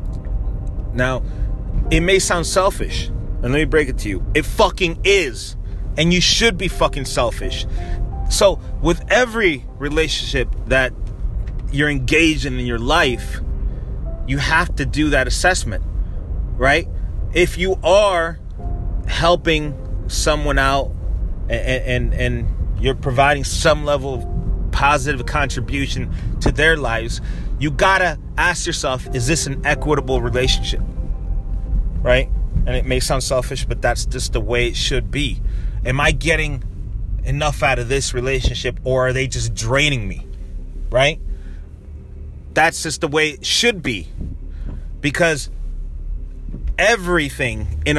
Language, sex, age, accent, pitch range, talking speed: English, male, 30-49, American, 95-150 Hz, 135 wpm